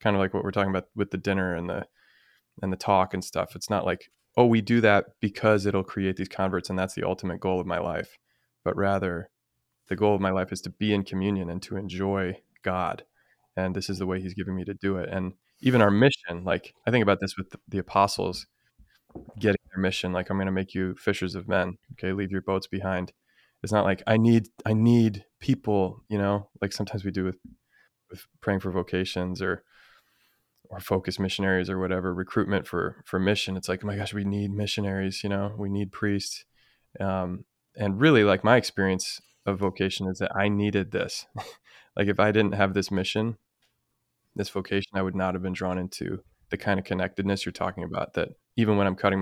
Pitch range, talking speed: 95-100 Hz, 215 wpm